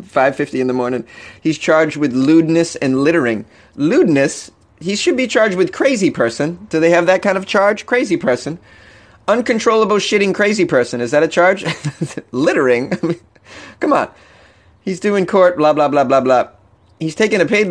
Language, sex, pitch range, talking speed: English, male, 145-200 Hz, 180 wpm